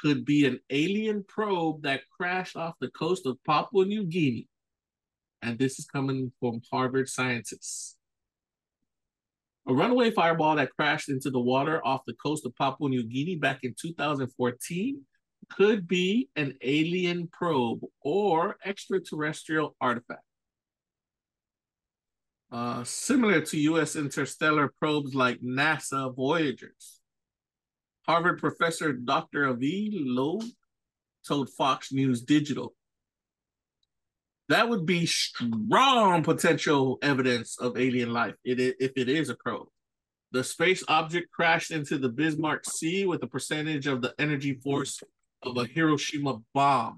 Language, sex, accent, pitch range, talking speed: English, male, American, 130-165 Hz, 125 wpm